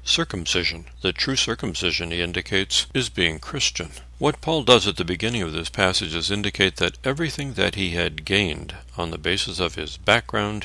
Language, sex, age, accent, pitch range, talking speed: English, male, 60-79, American, 80-105 Hz, 180 wpm